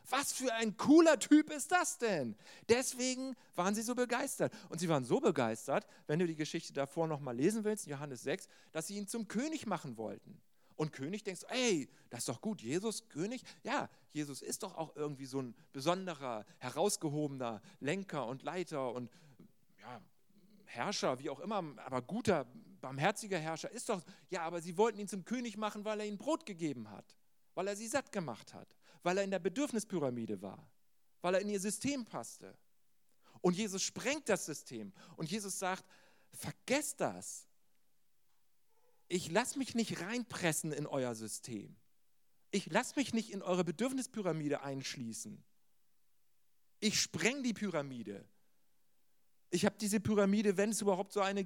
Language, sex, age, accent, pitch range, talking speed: German, male, 40-59, German, 155-225 Hz, 165 wpm